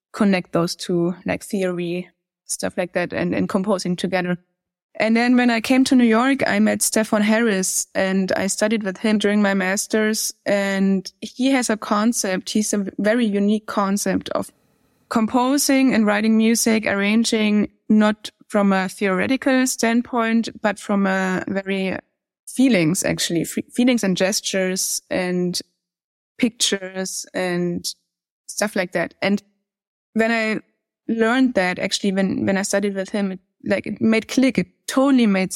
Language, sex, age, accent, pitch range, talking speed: English, female, 20-39, German, 185-225 Hz, 150 wpm